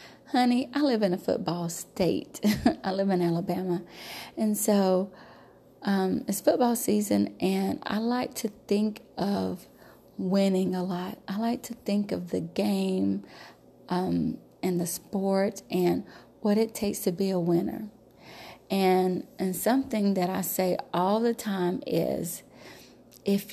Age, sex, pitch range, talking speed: 30-49, female, 185-235 Hz, 145 wpm